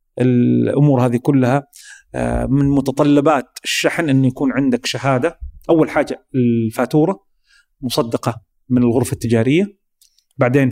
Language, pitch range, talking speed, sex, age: Arabic, 125-165 Hz, 100 wpm, male, 40-59